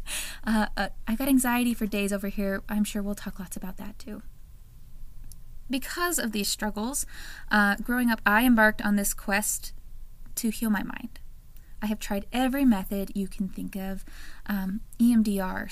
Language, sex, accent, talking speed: English, female, American, 170 wpm